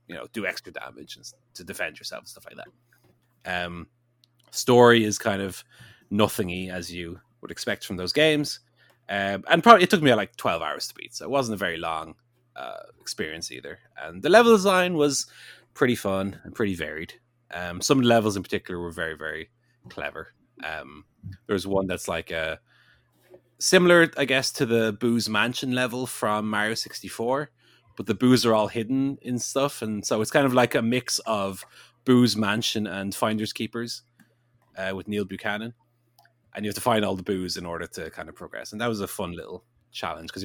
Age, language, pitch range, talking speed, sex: 30-49, English, 105-125 Hz, 195 wpm, male